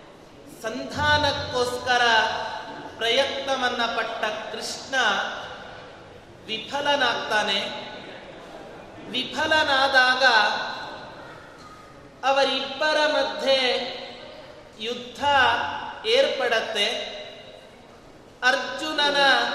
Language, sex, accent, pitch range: Kannada, male, native, 235-295 Hz